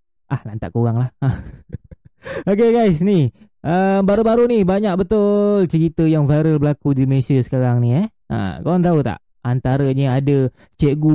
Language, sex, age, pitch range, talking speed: Malay, male, 20-39, 140-190 Hz, 150 wpm